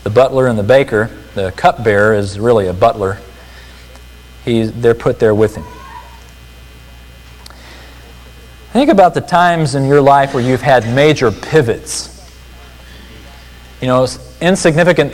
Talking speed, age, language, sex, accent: 125 wpm, 40-59, English, male, American